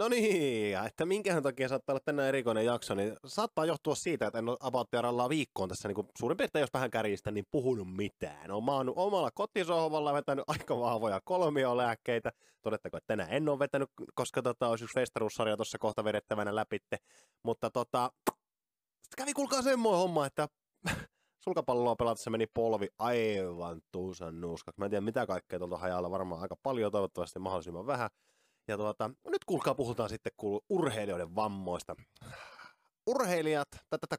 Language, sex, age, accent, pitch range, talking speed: Finnish, male, 20-39, native, 105-155 Hz, 155 wpm